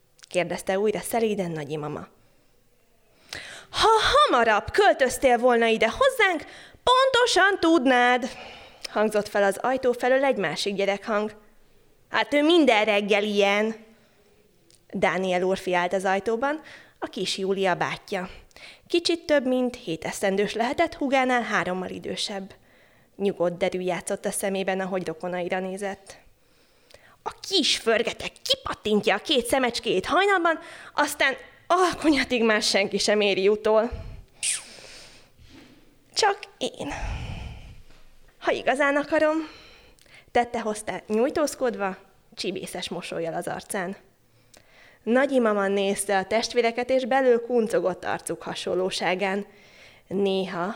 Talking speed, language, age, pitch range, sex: 110 wpm, Hungarian, 20-39, 195-265 Hz, female